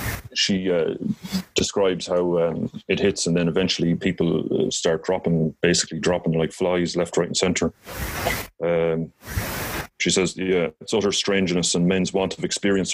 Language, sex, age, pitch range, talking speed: English, male, 30-49, 80-95 Hz, 150 wpm